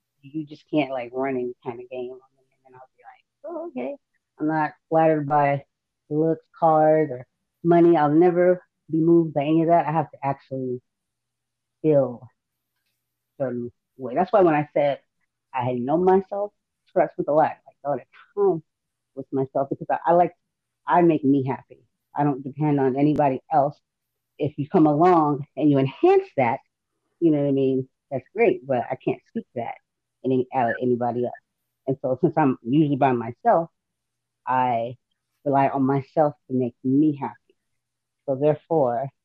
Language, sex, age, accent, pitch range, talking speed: English, female, 30-49, American, 130-165 Hz, 180 wpm